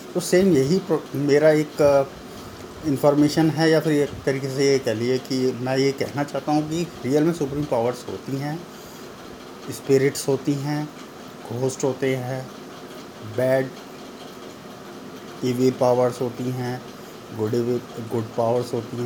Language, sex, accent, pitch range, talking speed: Hindi, male, native, 120-140 Hz, 140 wpm